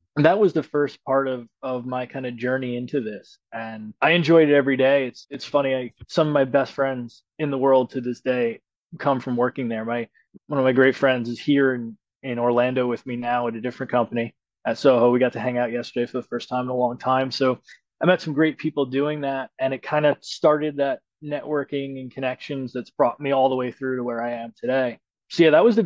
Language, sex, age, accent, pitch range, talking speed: English, male, 20-39, American, 125-140 Hz, 245 wpm